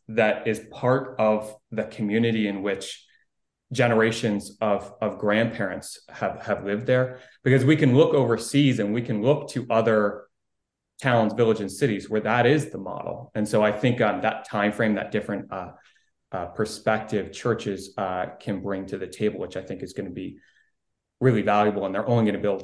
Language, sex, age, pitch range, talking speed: English, male, 30-49, 100-120 Hz, 195 wpm